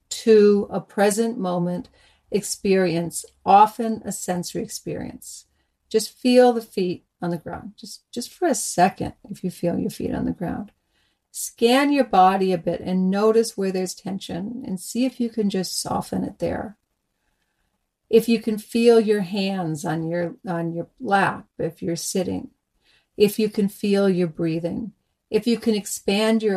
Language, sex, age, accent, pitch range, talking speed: English, female, 50-69, American, 185-225 Hz, 165 wpm